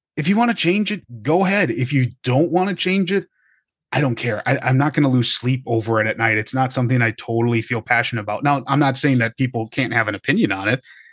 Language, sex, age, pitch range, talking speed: English, male, 20-39, 115-150 Hz, 265 wpm